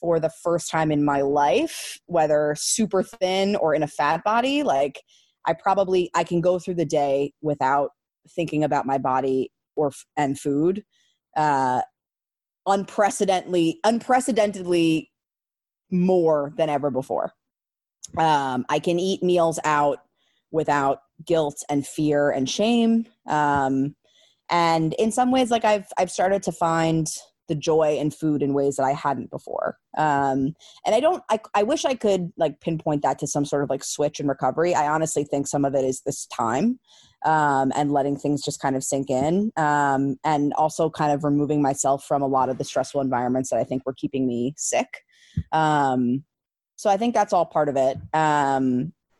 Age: 20-39